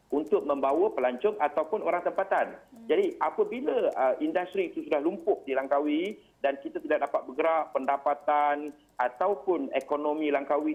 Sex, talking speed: male, 130 wpm